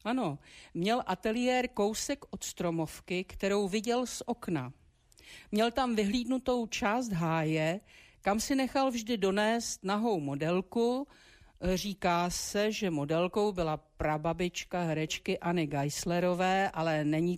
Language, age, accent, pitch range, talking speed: Czech, 50-69, native, 165-230 Hz, 115 wpm